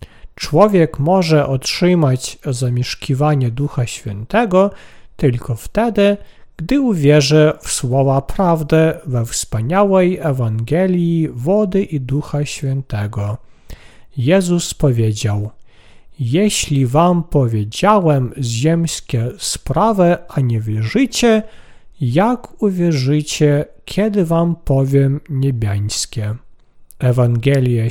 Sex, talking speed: male, 80 wpm